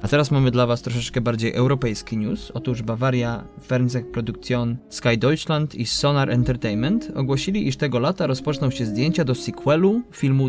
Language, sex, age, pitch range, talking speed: Polish, male, 20-39, 120-150 Hz, 155 wpm